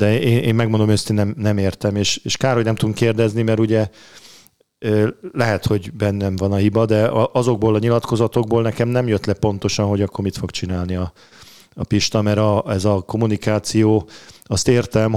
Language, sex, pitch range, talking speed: Hungarian, male, 100-115 Hz, 175 wpm